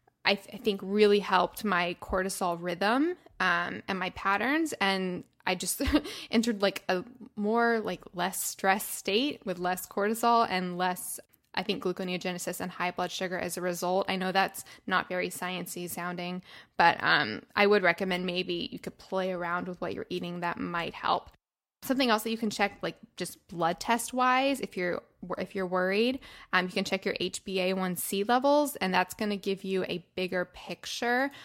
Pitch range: 180-215 Hz